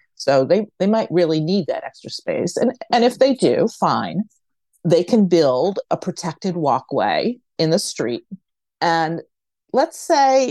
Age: 40-59